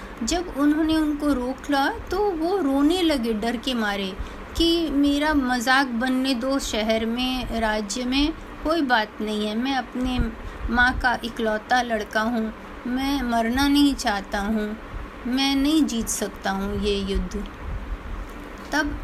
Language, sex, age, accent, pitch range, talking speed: Hindi, female, 30-49, native, 225-300 Hz, 140 wpm